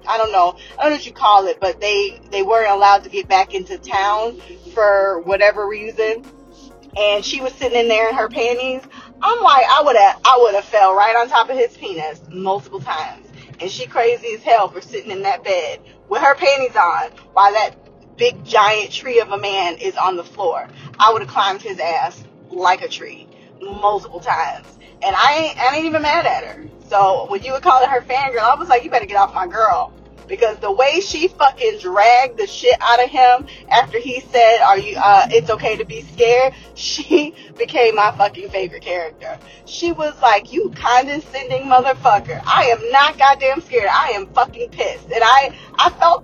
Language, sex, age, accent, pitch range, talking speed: English, female, 20-39, American, 210-350 Hz, 205 wpm